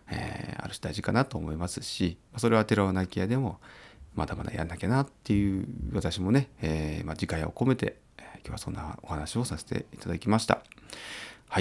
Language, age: Japanese, 30-49